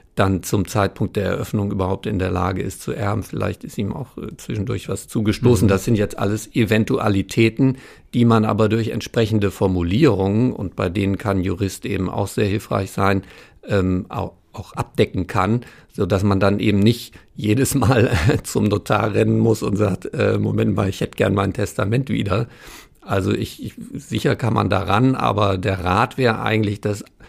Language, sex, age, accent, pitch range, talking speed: German, male, 50-69, German, 100-115 Hz, 180 wpm